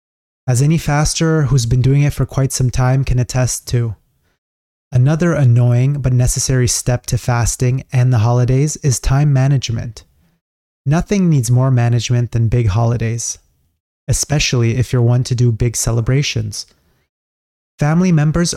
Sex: male